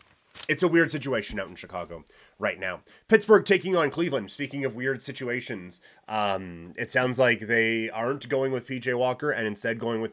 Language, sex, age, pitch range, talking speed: English, male, 30-49, 115-140 Hz, 185 wpm